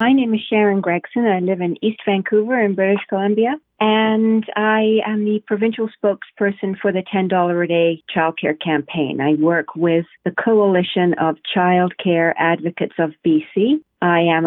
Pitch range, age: 170-190 Hz, 40-59